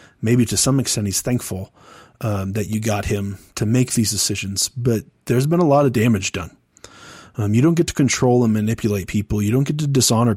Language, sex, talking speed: English, male, 215 wpm